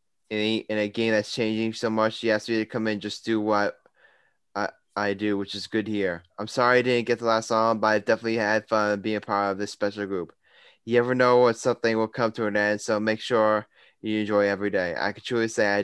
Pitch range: 105-125 Hz